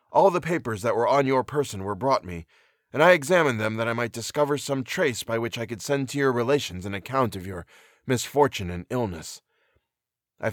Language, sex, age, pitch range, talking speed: English, male, 20-39, 105-135 Hz, 210 wpm